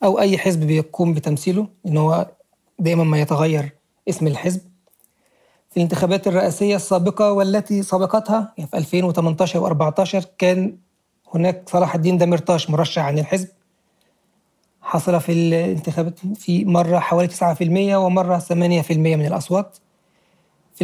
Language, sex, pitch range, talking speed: Arabic, male, 155-185 Hz, 120 wpm